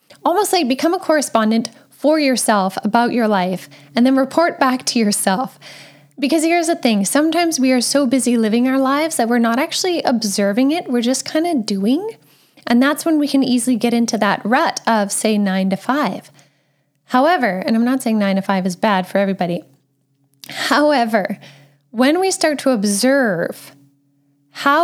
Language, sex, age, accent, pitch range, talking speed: English, female, 10-29, American, 195-265 Hz, 175 wpm